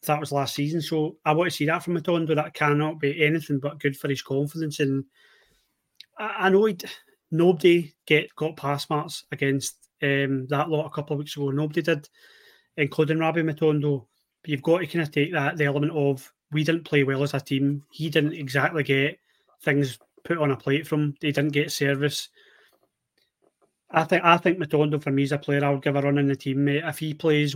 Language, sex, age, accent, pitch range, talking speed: English, male, 30-49, British, 140-155 Hz, 215 wpm